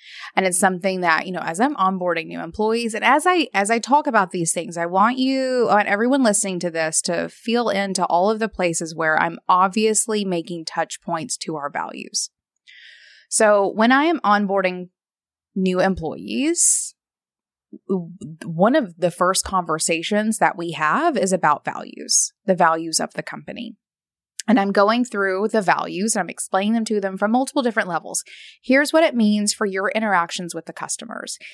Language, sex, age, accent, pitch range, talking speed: English, female, 20-39, American, 180-230 Hz, 175 wpm